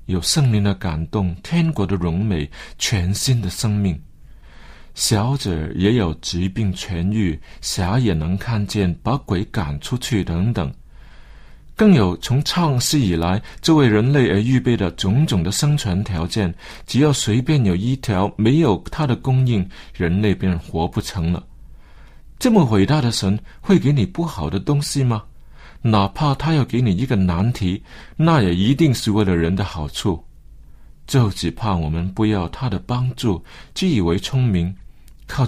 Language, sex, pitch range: Chinese, male, 90-135 Hz